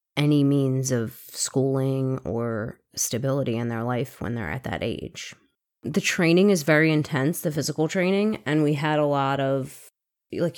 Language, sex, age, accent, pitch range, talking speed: English, female, 20-39, American, 130-160 Hz, 165 wpm